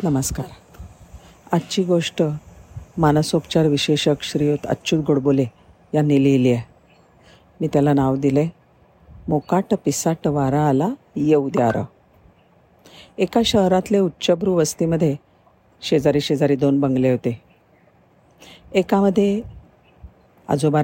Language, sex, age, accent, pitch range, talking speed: Marathi, female, 50-69, native, 145-180 Hz, 90 wpm